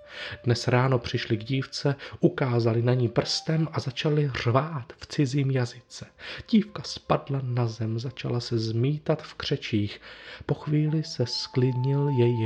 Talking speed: 140 wpm